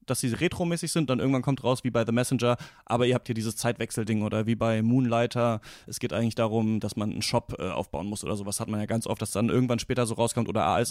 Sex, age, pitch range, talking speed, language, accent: male, 30-49, 115-140 Hz, 270 wpm, German, German